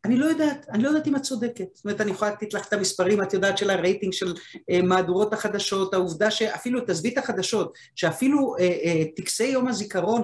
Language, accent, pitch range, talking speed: Hebrew, native, 170-215 Hz, 205 wpm